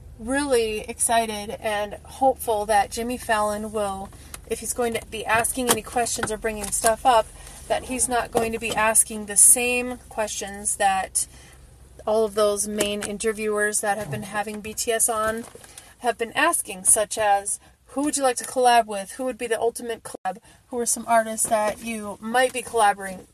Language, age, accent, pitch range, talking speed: English, 30-49, American, 210-245 Hz, 175 wpm